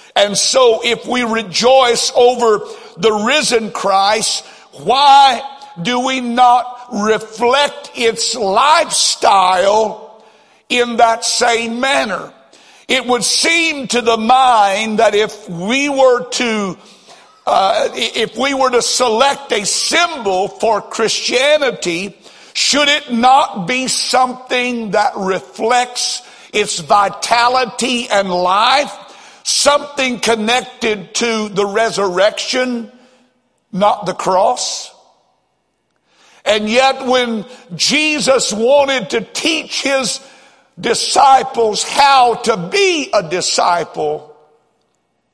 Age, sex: 60-79, male